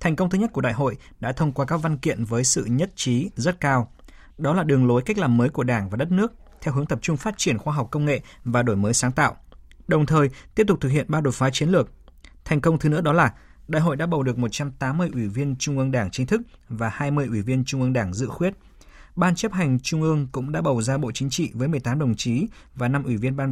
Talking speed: 270 wpm